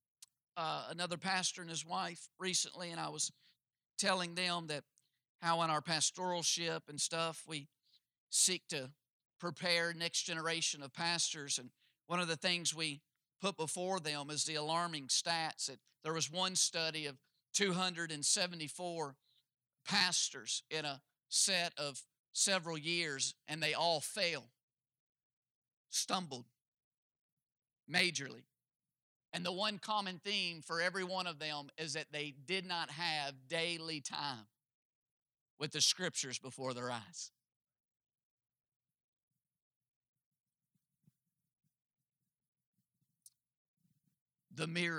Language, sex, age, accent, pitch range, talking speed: English, male, 50-69, American, 140-175 Hz, 120 wpm